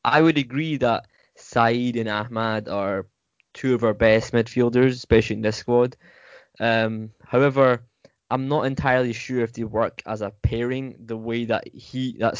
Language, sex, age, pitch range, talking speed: English, male, 10-29, 110-125 Hz, 165 wpm